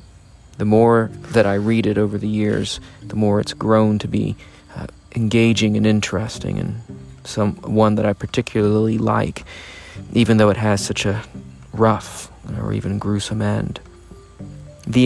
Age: 40-59